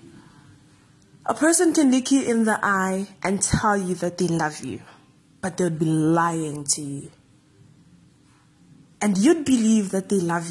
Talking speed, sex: 155 wpm, female